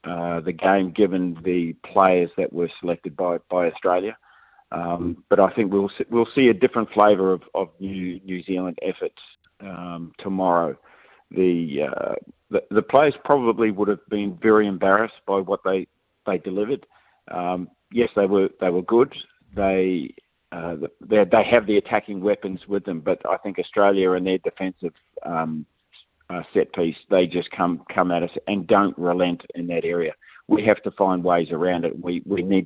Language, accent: English, Australian